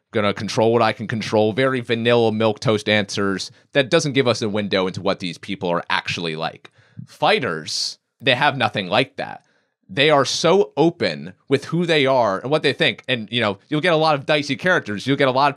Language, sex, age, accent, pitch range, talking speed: English, male, 30-49, American, 120-150 Hz, 230 wpm